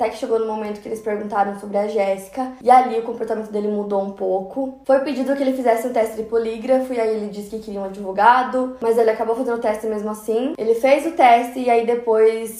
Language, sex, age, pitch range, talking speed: Portuguese, female, 10-29, 205-235 Hz, 245 wpm